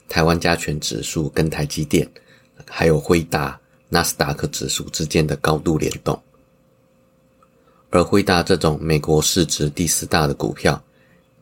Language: Chinese